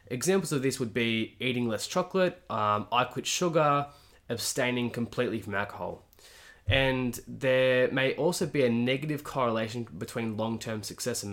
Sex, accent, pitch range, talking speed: male, Australian, 105-125 Hz, 150 wpm